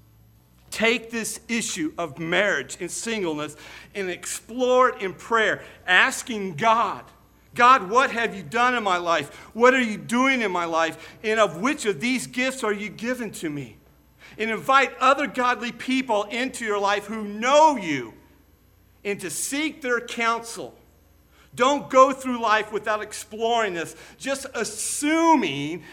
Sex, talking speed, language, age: male, 150 wpm, English, 50-69